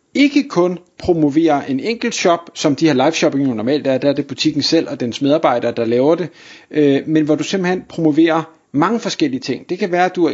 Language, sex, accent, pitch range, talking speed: Danish, male, native, 145-180 Hz, 230 wpm